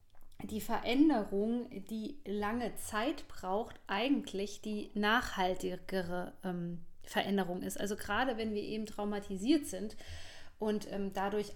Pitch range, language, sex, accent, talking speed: 195-230 Hz, German, female, German, 115 wpm